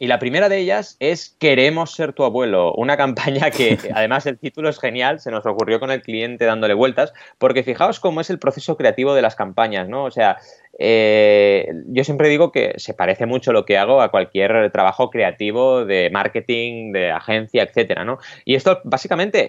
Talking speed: 190 wpm